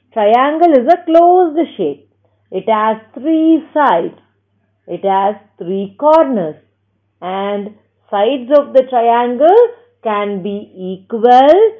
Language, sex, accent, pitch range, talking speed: Tamil, female, native, 185-275 Hz, 125 wpm